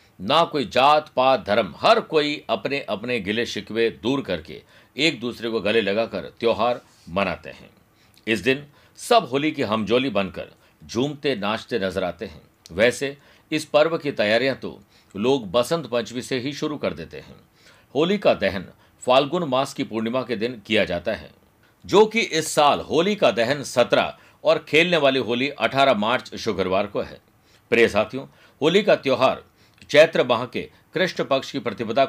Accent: native